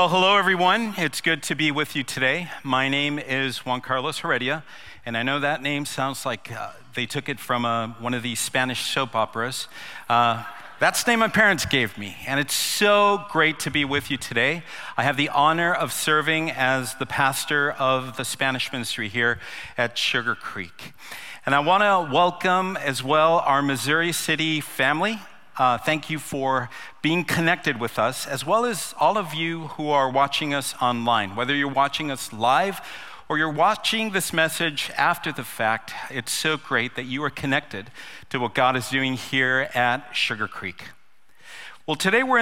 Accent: American